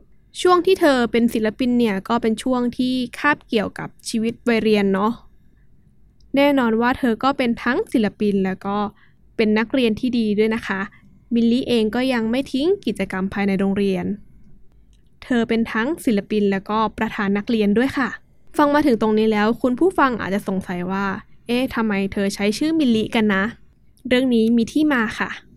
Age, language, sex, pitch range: 10-29, English, female, 210-260 Hz